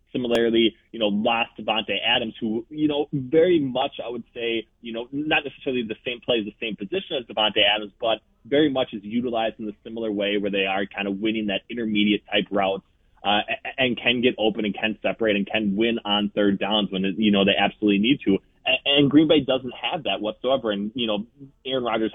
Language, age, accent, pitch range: English, 20-39, American, 105-125 Hz